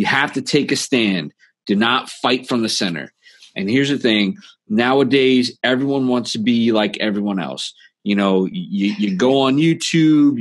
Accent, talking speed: American, 180 wpm